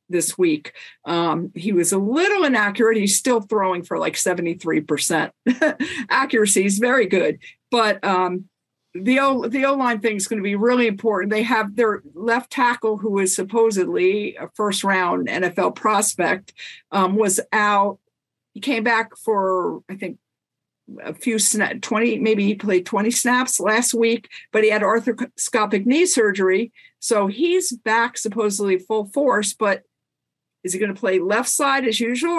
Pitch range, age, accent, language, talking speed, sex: 185-235 Hz, 50-69, American, English, 155 wpm, female